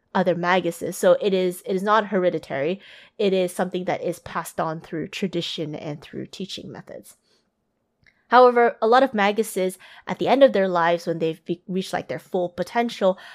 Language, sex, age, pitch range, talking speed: English, female, 20-39, 170-210 Hz, 180 wpm